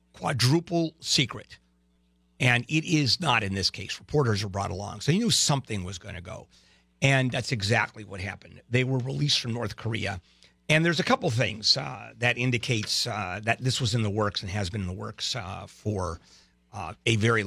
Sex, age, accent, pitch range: male, 50-69, American, 105-140 Hz